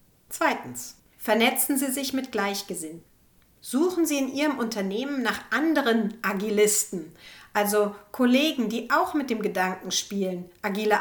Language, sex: German, female